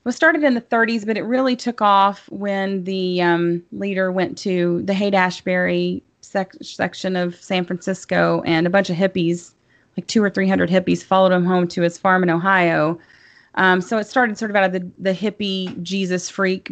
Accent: American